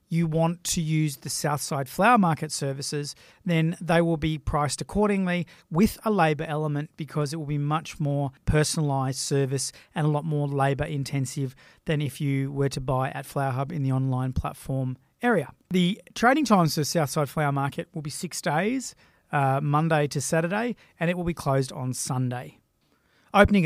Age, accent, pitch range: 30-49, Australian, 140-165 Hz